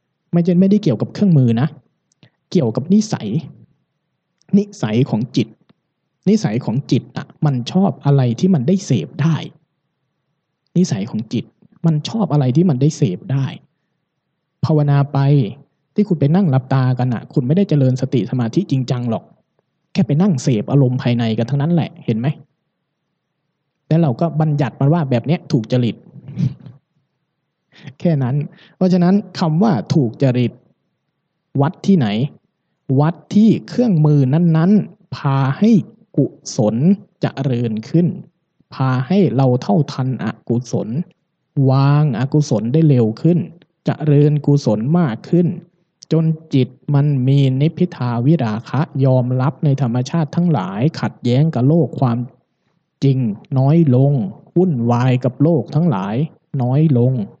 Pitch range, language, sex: 130-170 Hz, Thai, male